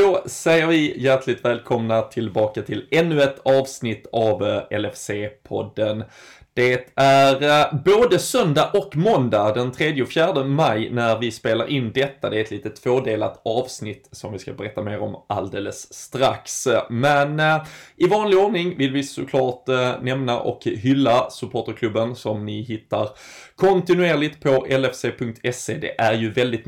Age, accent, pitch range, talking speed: 20-39, native, 110-140 Hz, 140 wpm